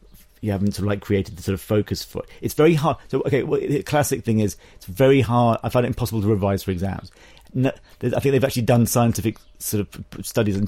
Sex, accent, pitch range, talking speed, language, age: male, British, 100-115 Hz, 245 wpm, English, 40-59